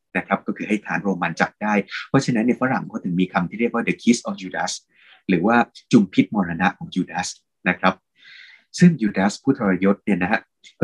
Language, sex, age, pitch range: Thai, male, 20-39, 95-135 Hz